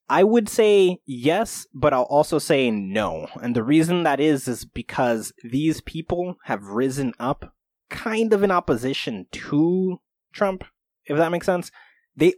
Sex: male